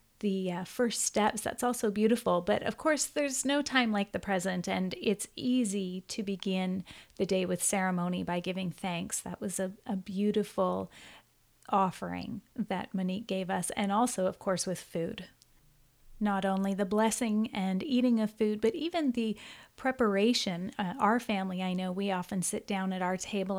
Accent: American